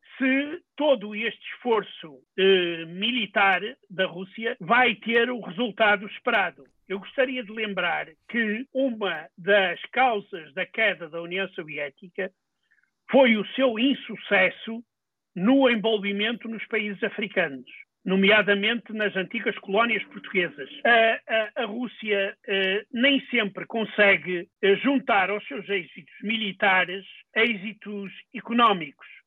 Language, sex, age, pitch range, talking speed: Portuguese, male, 50-69, 195-245 Hz, 110 wpm